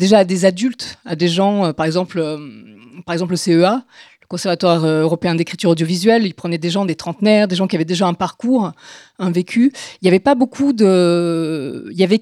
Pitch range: 175-225 Hz